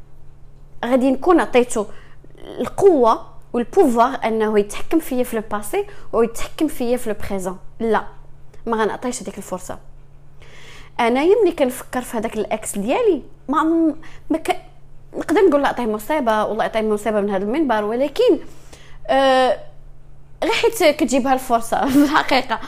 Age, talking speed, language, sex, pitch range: 20-39, 70 wpm, English, female, 220-310 Hz